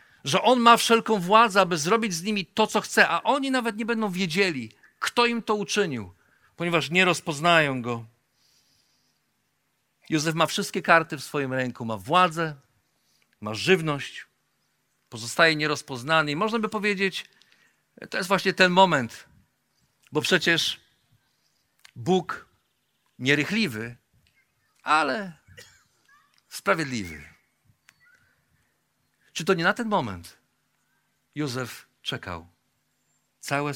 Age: 50-69